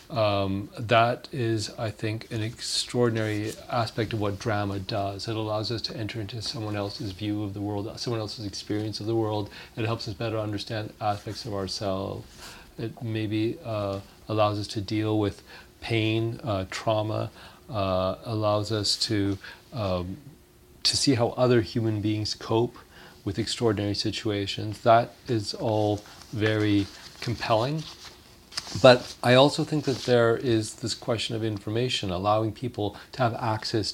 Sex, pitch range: male, 105-120 Hz